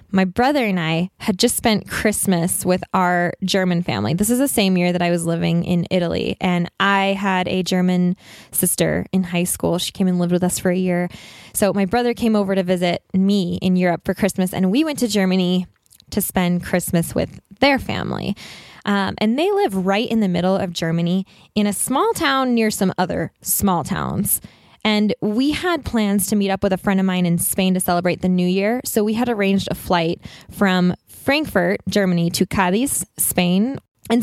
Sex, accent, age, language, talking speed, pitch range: female, American, 10-29, English, 200 wpm, 185-230 Hz